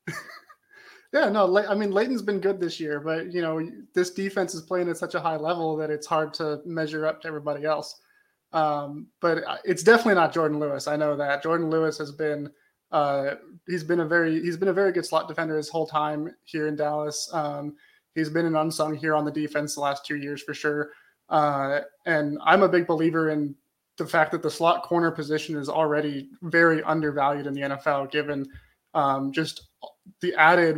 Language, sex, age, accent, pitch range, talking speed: English, male, 20-39, American, 150-165 Hz, 200 wpm